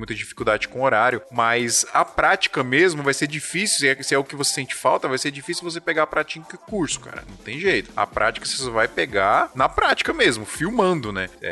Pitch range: 110-150 Hz